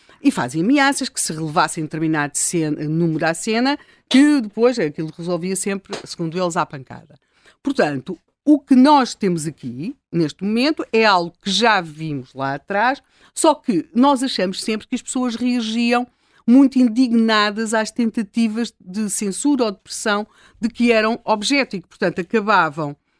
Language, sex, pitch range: Portuguese, female, 170-235 Hz